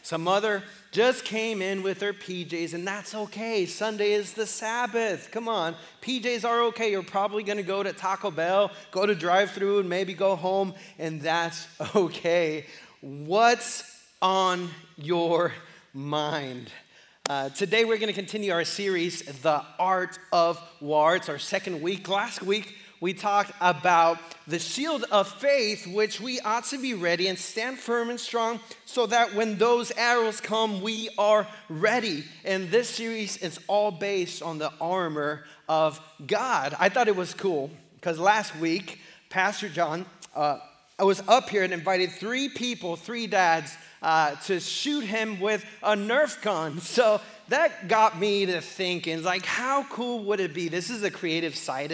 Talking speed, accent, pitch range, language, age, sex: 165 wpm, American, 170-225 Hz, English, 30-49, male